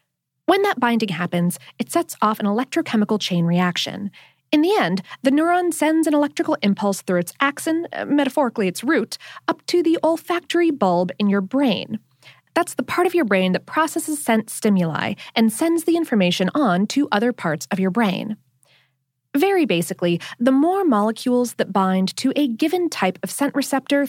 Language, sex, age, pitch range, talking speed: English, female, 20-39, 190-310 Hz, 170 wpm